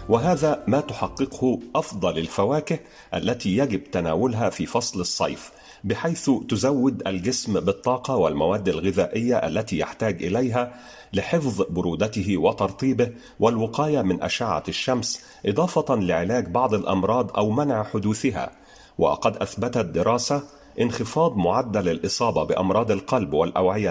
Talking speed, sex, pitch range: 110 wpm, male, 105-145 Hz